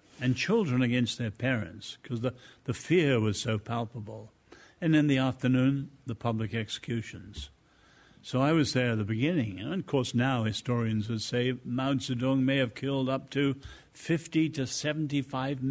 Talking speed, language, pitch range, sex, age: 160 wpm, English, 115-135 Hz, male, 60-79